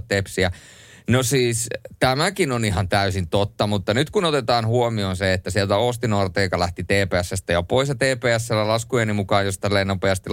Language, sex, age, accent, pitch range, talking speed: Finnish, male, 30-49, native, 95-130 Hz, 165 wpm